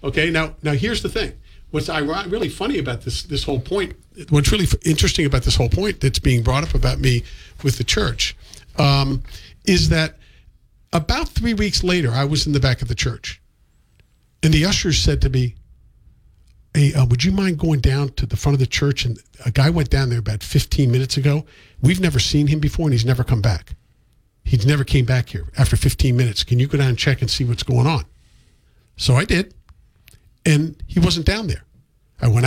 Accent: American